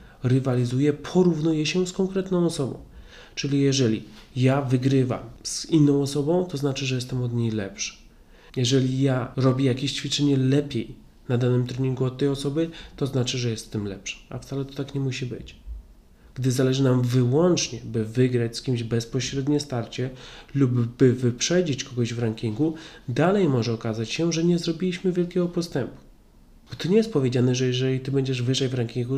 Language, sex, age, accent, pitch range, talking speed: Polish, male, 30-49, native, 125-160 Hz, 165 wpm